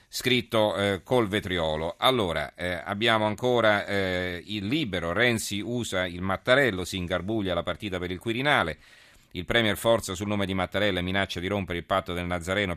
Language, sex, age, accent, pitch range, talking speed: Italian, male, 40-59, native, 85-100 Hz, 170 wpm